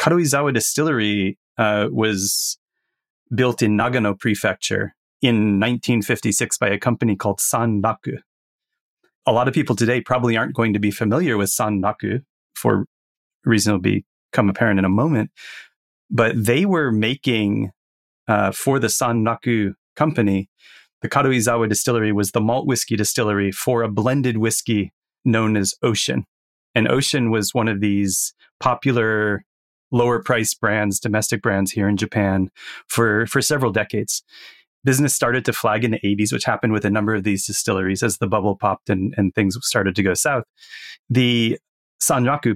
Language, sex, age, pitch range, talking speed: English, male, 30-49, 105-125 Hz, 155 wpm